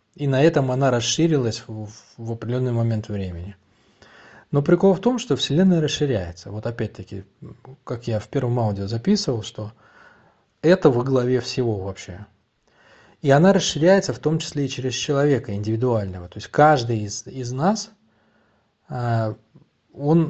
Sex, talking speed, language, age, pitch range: male, 140 wpm, Russian, 20-39, 110-145 Hz